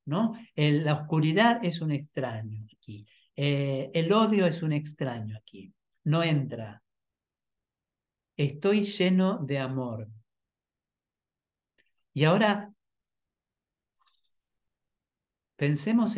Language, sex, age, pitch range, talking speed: Spanish, male, 50-69, 130-170 Hz, 80 wpm